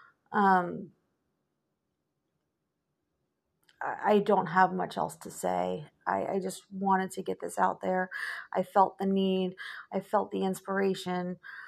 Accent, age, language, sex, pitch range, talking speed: American, 40-59, English, female, 180-210 Hz, 135 wpm